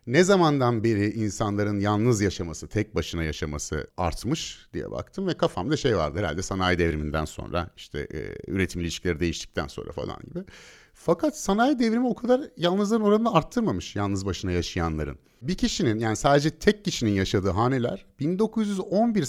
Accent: native